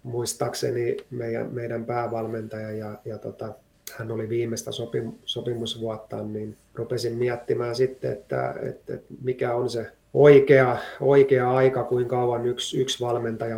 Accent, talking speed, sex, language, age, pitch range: native, 135 wpm, male, Finnish, 30-49, 110-120 Hz